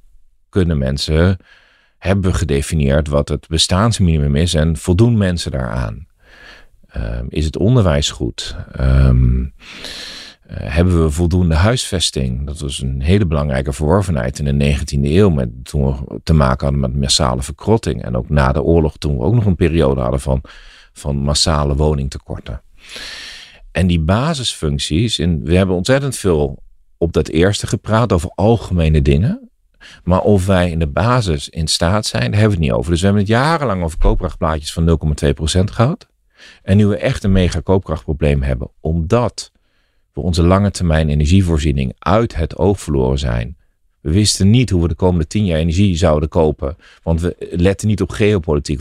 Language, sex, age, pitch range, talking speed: Dutch, male, 40-59, 75-100 Hz, 165 wpm